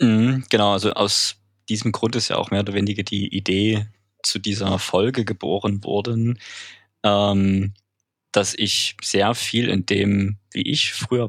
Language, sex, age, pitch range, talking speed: German, male, 20-39, 100-120 Hz, 145 wpm